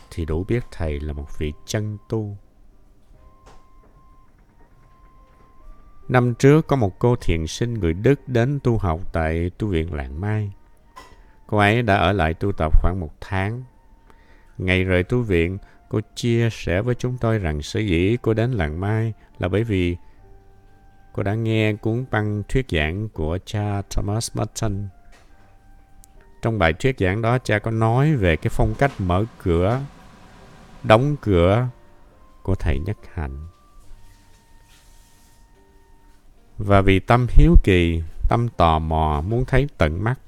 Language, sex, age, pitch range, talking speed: Vietnamese, male, 60-79, 85-110 Hz, 145 wpm